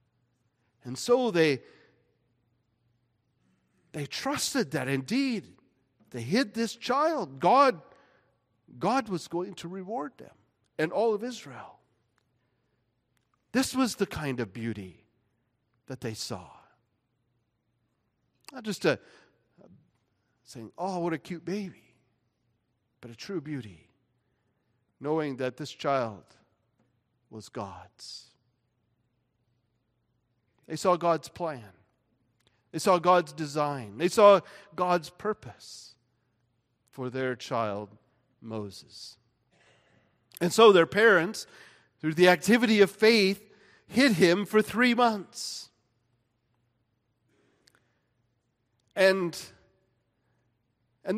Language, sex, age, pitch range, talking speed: English, male, 50-69, 120-180 Hz, 95 wpm